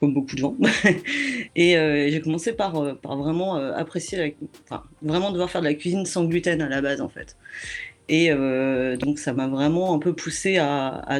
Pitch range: 140-170 Hz